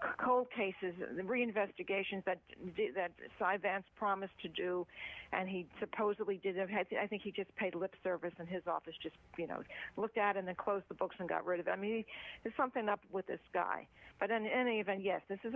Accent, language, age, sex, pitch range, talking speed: American, English, 50-69, female, 185-220 Hz, 220 wpm